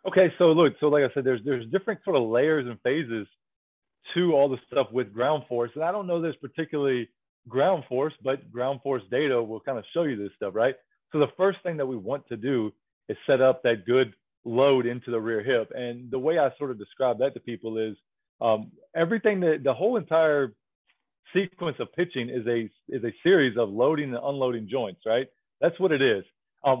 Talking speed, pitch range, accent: 215 wpm, 120-165 Hz, American